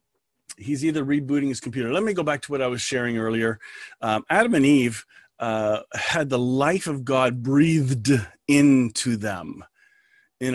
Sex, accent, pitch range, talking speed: male, American, 125-165 Hz, 165 wpm